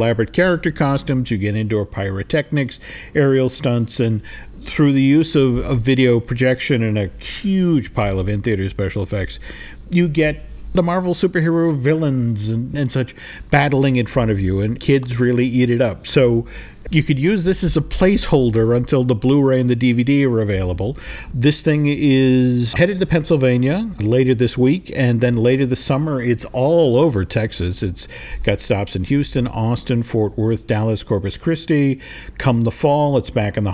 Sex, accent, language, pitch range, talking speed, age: male, American, English, 115-155 Hz, 175 wpm, 50-69